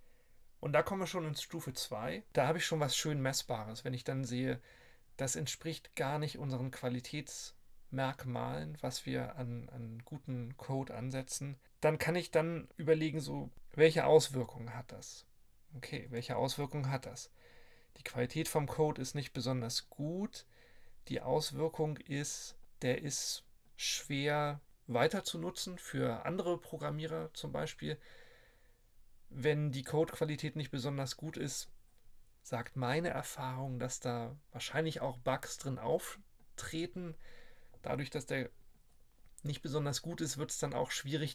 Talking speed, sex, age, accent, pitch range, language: 140 wpm, male, 40-59, German, 125-155 Hz, German